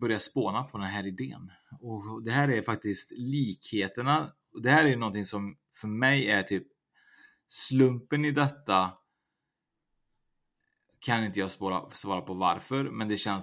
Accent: Norwegian